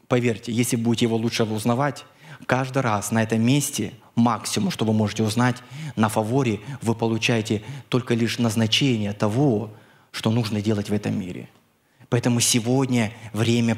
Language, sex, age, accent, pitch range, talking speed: Russian, male, 20-39, native, 115-150 Hz, 145 wpm